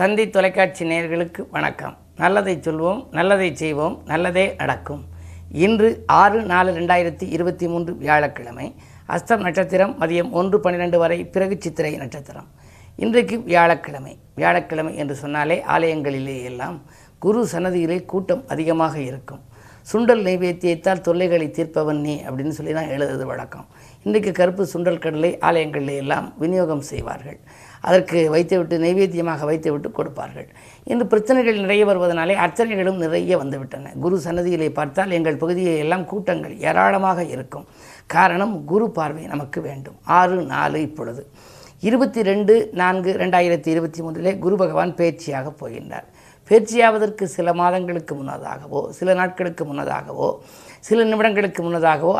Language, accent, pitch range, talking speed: Tamil, native, 155-190 Hz, 120 wpm